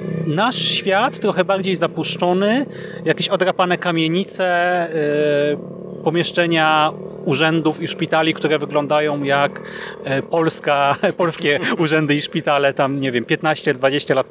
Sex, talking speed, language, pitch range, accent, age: male, 105 wpm, Polish, 145-180 Hz, native, 30-49